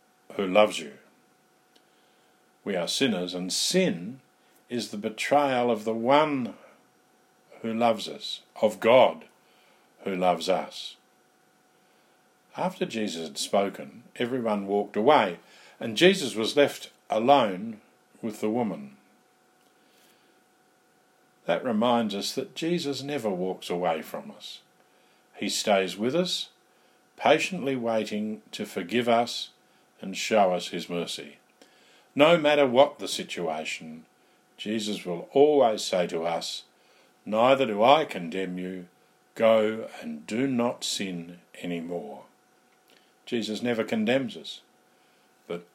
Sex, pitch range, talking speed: male, 95-135 Hz, 115 wpm